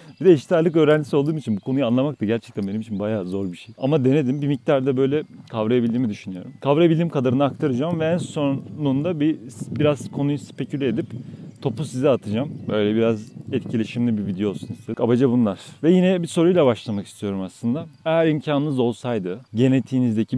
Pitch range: 110-150 Hz